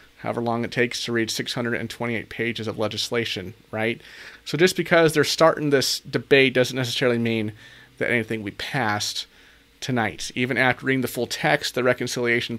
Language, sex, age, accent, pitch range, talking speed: English, male, 30-49, American, 120-160 Hz, 175 wpm